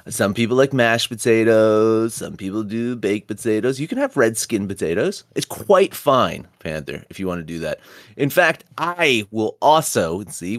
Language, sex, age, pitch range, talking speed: English, male, 30-49, 90-130 Hz, 180 wpm